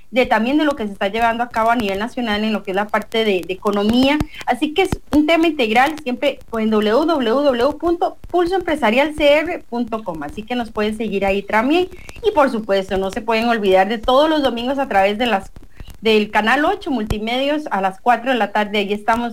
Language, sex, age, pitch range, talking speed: English, female, 30-49, 215-275 Hz, 200 wpm